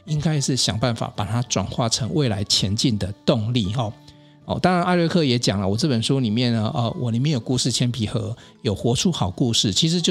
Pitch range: 115-150 Hz